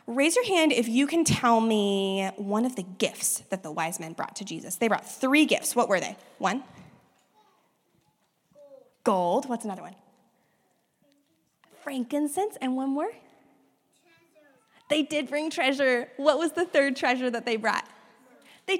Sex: female